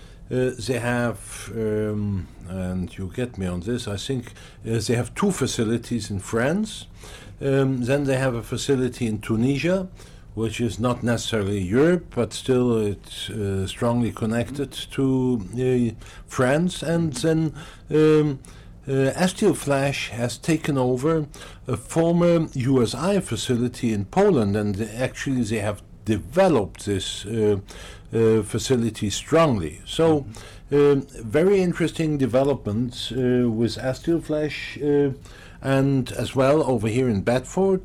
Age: 60-79